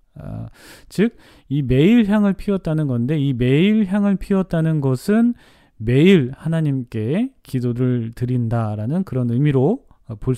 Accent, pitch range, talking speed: Korean, 120-180 Hz, 105 wpm